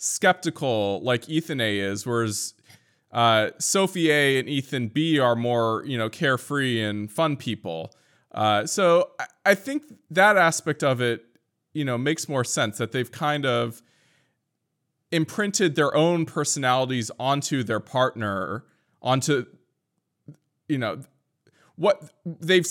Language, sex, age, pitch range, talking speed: English, male, 20-39, 120-160 Hz, 130 wpm